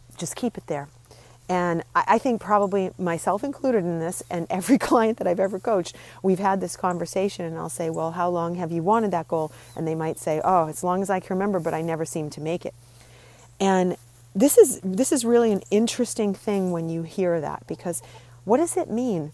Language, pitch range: English, 150-195 Hz